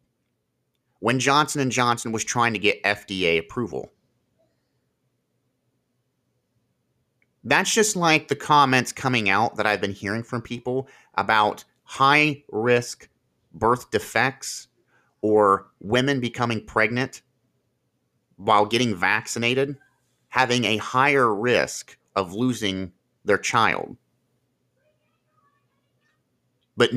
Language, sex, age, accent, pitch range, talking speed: English, male, 30-49, American, 120-145 Hz, 95 wpm